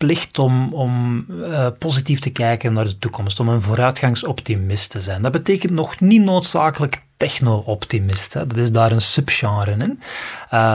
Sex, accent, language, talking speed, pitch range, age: male, Dutch, Dutch, 155 wpm, 115-145 Hz, 30-49